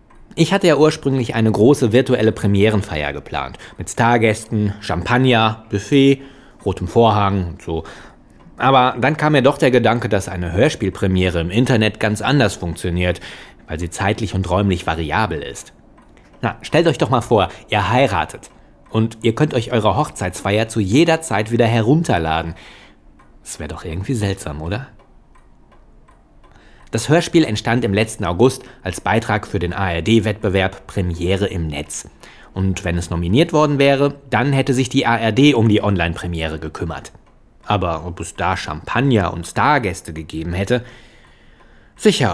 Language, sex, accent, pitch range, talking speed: German, male, German, 90-125 Hz, 145 wpm